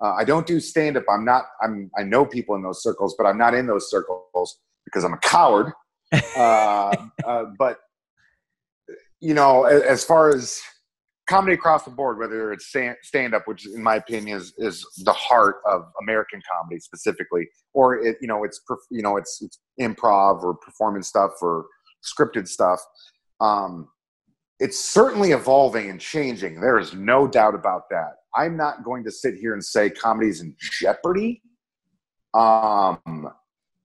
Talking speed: 175 wpm